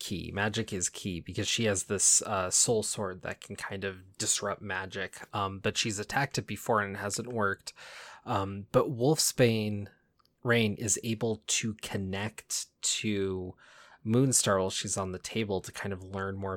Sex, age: male, 20-39